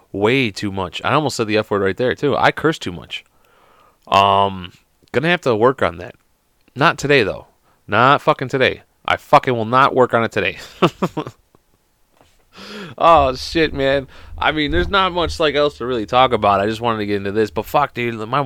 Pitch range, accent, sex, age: 90-135 Hz, American, male, 30-49